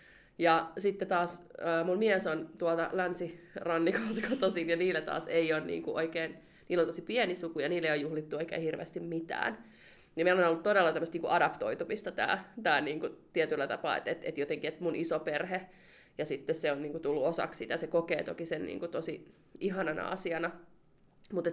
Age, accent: 30-49, native